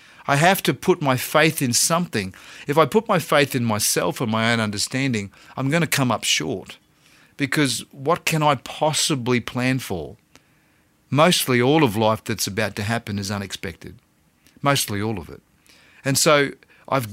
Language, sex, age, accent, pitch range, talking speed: English, male, 40-59, Australian, 110-140 Hz, 170 wpm